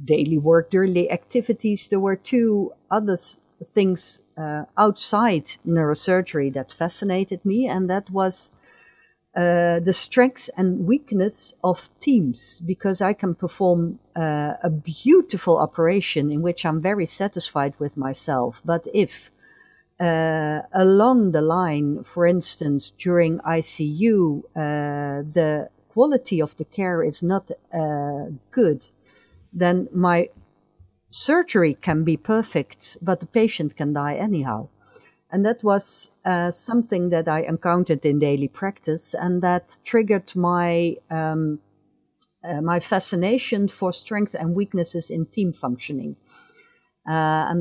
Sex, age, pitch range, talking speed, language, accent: female, 50-69, 155-195 Hz, 125 wpm, English, Dutch